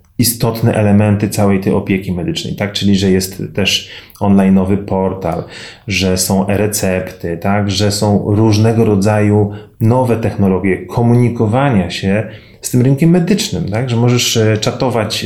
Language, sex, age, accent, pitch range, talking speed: Polish, male, 30-49, native, 100-130 Hz, 120 wpm